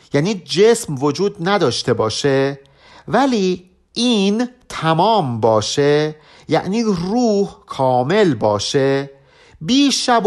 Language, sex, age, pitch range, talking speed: Persian, male, 50-69, 140-215 Hz, 90 wpm